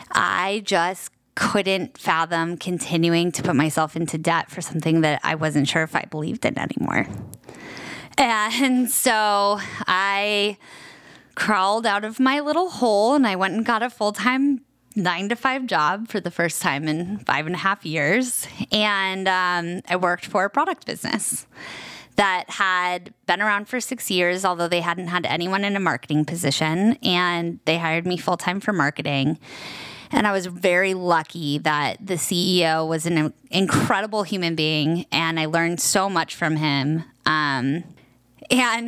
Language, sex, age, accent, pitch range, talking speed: English, female, 10-29, American, 160-200 Hz, 160 wpm